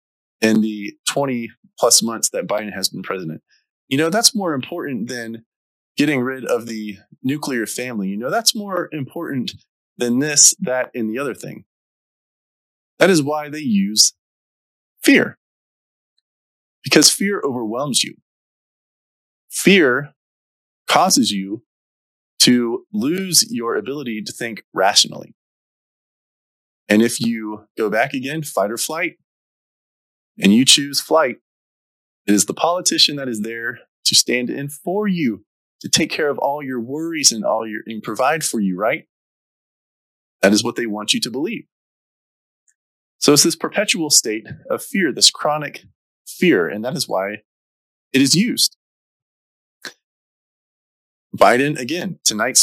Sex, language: male, English